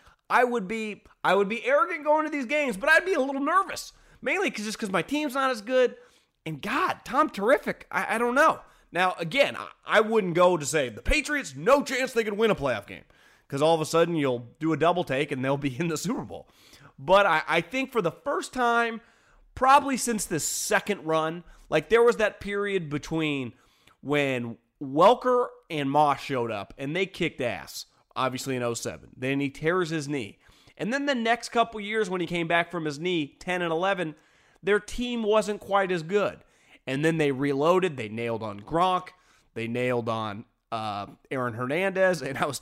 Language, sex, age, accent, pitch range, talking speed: English, male, 30-49, American, 140-215 Hz, 205 wpm